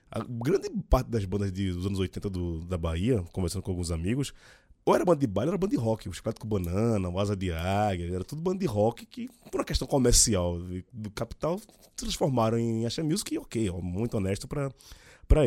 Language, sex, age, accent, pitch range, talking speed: Portuguese, male, 20-39, Brazilian, 95-135 Hz, 220 wpm